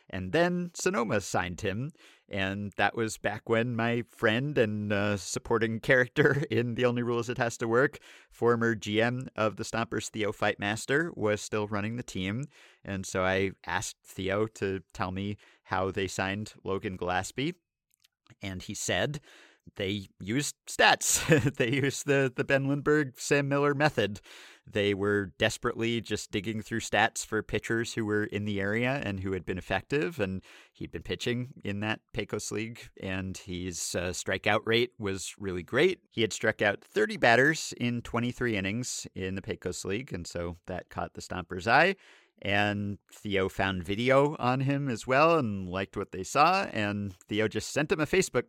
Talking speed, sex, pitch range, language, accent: 170 wpm, male, 95-120 Hz, English, American